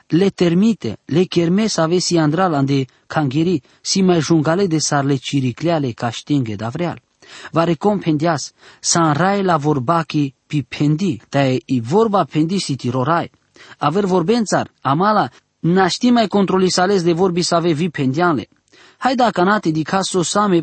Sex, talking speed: male, 145 wpm